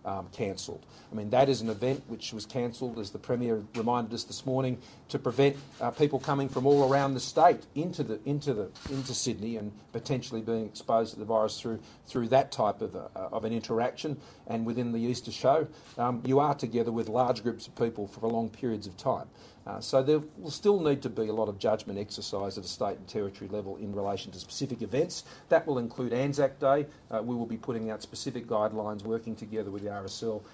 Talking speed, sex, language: 220 wpm, male, English